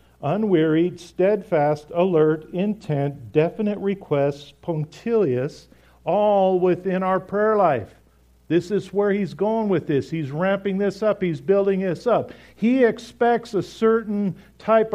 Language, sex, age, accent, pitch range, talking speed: English, male, 50-69, American, 125-185 Hz, 130 wpm